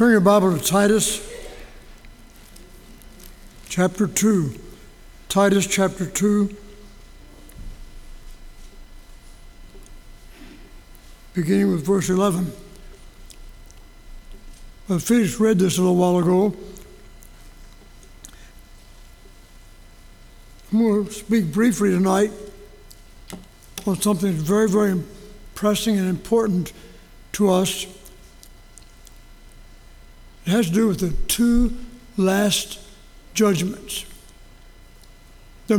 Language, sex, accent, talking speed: English, male, American, 80 wpm